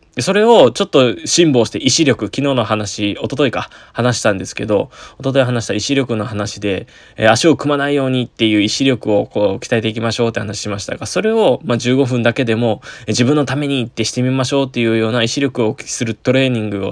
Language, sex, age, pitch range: Japanese, male, 20-39, 110-155 Hz